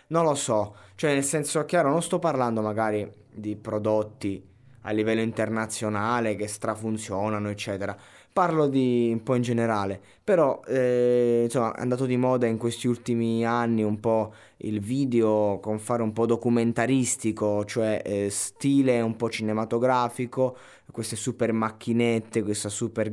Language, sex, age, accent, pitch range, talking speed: Italian, male, 20-39, native, 105-120 Hz, 145 wpm